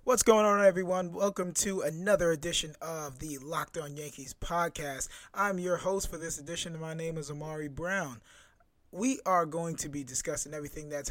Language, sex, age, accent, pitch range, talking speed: English, male, 20-39, American, 140-170 Hz, 185 wpm